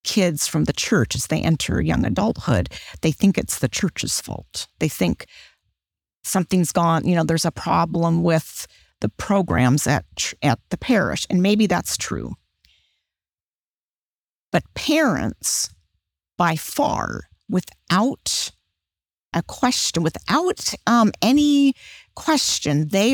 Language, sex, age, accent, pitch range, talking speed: English, female, 40-59, American, 155-200 Hz, 120 wpm